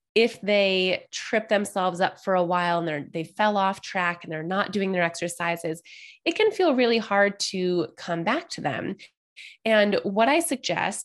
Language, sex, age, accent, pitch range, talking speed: English, female, 20-39, American, 180-270 Hz, 180 wpm